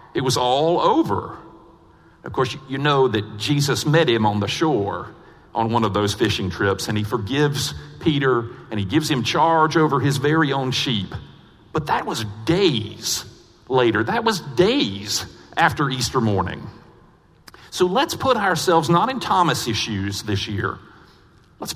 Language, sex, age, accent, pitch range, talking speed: English, male, 50-69, American, 115-165 Hz, 155 wpm